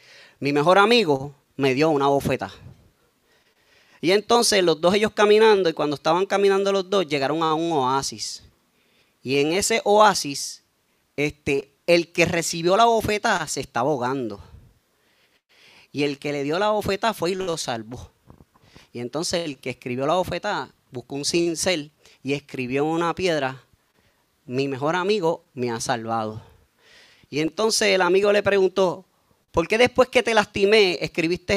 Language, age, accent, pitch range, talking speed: Spanish, 30-49, American, 135-185 Hz, 155 wpm